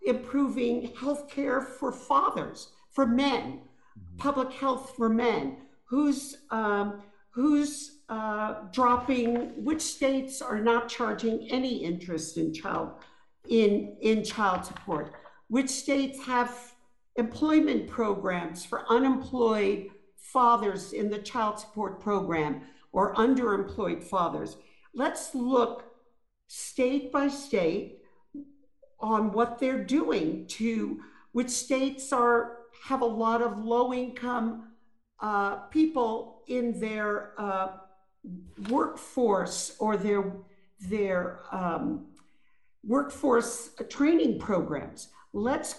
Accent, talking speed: American, 100 wpm